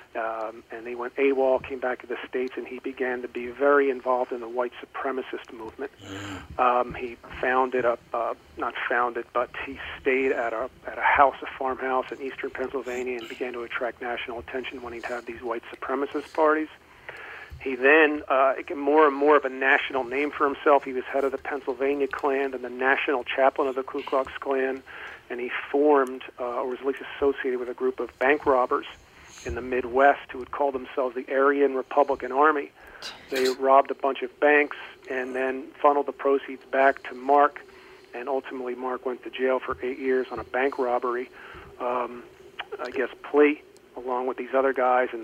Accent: American